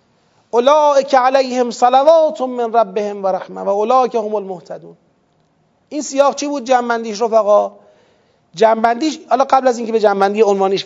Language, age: Persian, 40-59